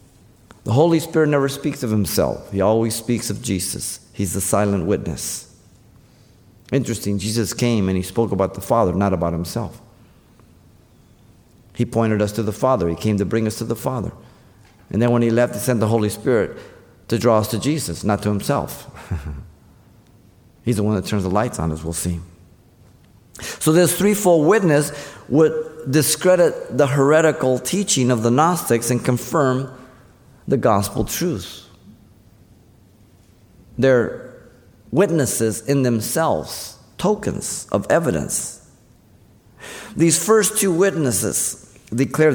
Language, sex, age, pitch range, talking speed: English, male, 50-69, 105-130 Hz, 140 wpm